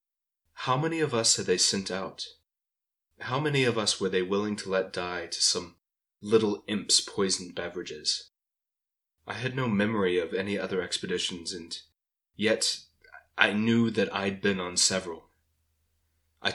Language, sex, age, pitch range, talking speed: English, male, 20-39, 85-115 Hz, 150 wpm